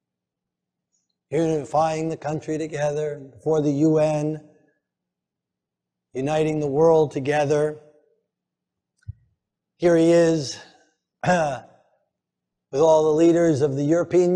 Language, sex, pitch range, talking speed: English, male, 145-170 Hz, 90 wpm